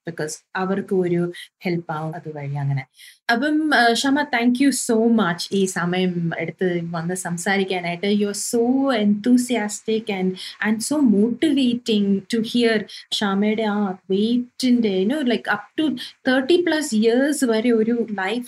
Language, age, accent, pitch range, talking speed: Malayalam, 30-49, native, 185-240 Hz, 125 wpm